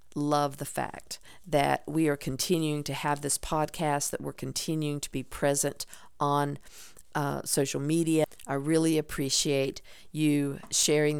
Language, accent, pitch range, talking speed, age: English, American, 145-160 Hz, 140 wpm, 50-69